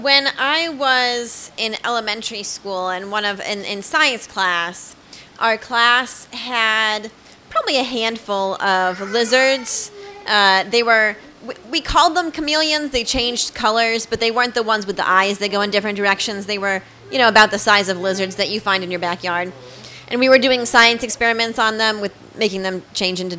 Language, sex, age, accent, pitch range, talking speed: English, female, 20-39, American, 205-260 Hz, 185 wpm